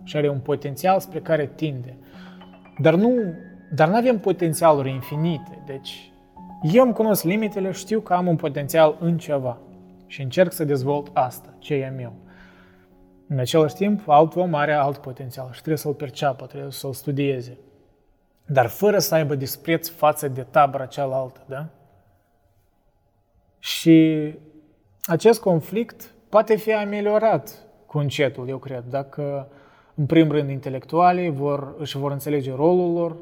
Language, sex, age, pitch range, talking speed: Romanian, male, 20-39, 135-170 Hz, 145 wpm